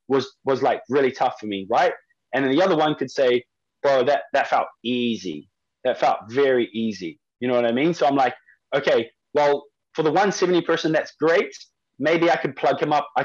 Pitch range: 130-165 Hz